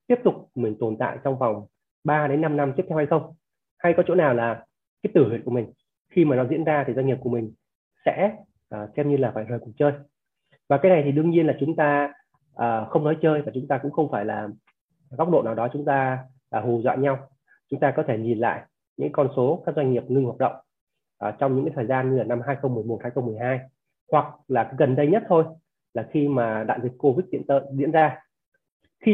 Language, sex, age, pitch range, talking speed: Vietnamese, male, 20-39, 125-150 Hz, 235 wpm